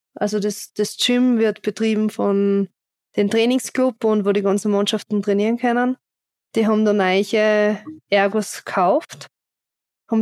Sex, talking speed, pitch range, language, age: female, 135 wpm, 205-235 Hz, German, 20-39